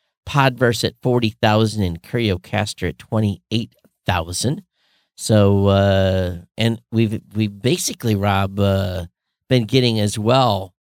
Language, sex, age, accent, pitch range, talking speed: English, male, 50-69, American, 100-135 Hz, 105 wpm